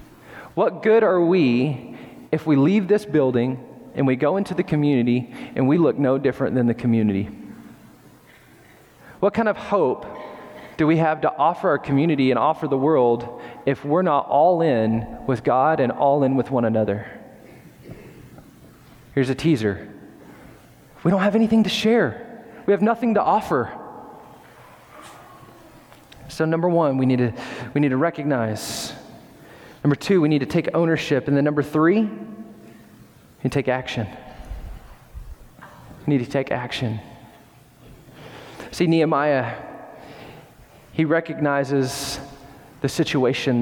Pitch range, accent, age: 130-160 Hz, American, 20-39